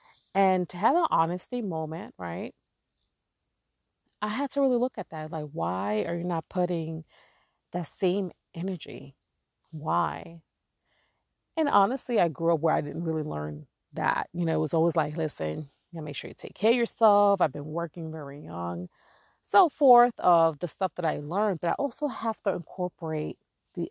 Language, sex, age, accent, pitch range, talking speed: English, female, 30-49, American, 155-200 Hz, 180 wpm